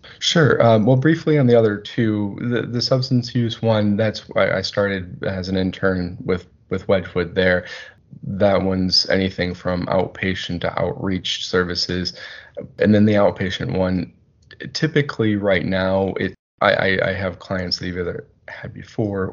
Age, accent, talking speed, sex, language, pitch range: 20-39, American, 155 wpm, male, English, 90-110 Hz